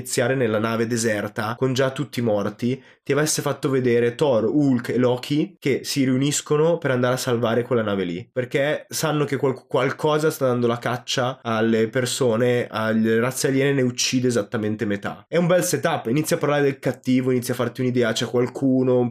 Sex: male